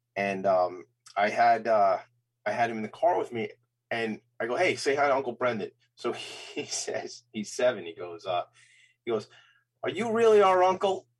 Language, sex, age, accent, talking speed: English, male, 30-49, American, 200 wpm